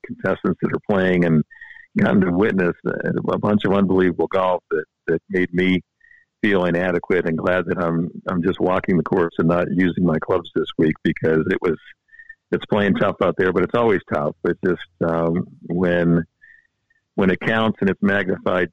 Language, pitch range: English, 85-100 Hz